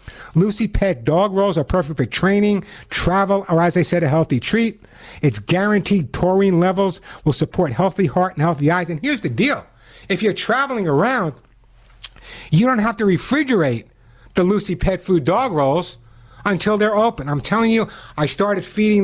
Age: 60-79